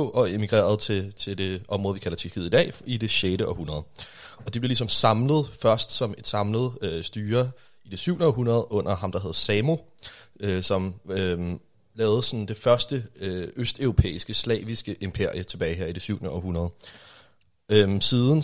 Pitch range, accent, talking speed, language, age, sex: 90-115 Hz, native, 175 wpm, Danish, 30-49, male